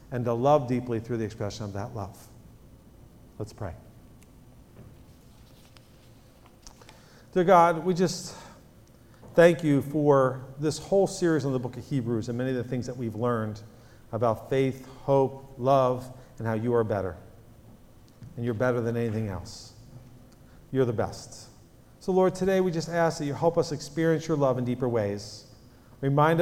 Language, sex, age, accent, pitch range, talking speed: English, male, 50-69, American, 115-140 Hz, 160 wpm